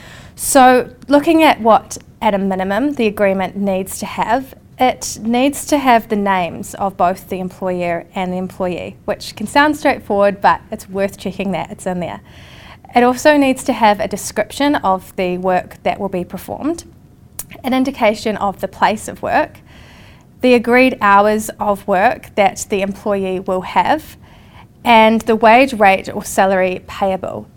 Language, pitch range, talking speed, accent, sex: English, 190-225 Hz, 165 wpm, Australian, female